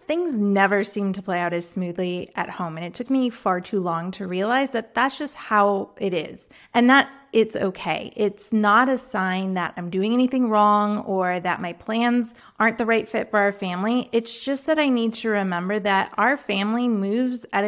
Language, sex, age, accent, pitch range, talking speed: English, female, 20-39, American, 190-230 Hz, 205 wpm